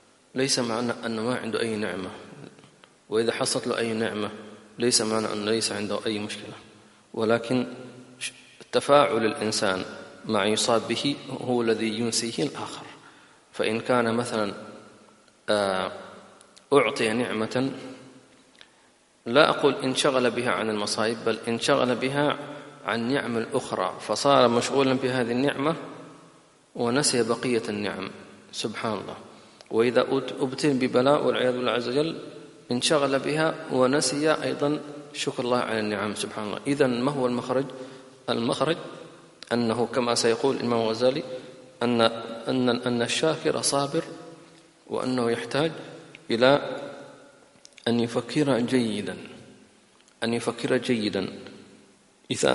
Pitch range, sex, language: 115-135 Hz, male, English